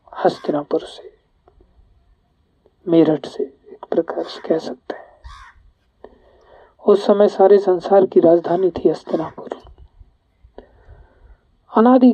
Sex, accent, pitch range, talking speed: male, native, 175-240 Hz, 95 wpm